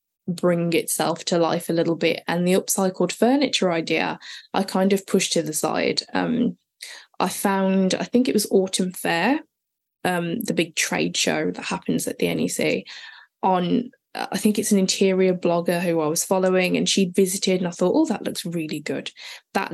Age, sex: 10-29, female